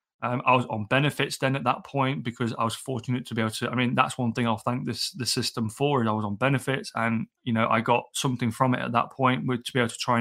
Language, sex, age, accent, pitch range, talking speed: English, male, 20-39, British, 115-130 Hz, 295 wpm